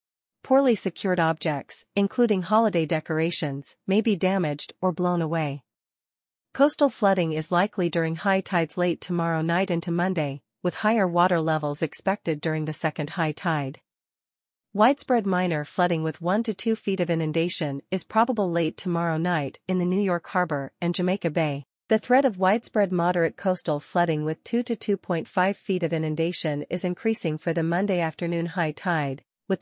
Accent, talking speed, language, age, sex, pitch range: American, 160 wpm, English, 40-59, female, 160-190 Hz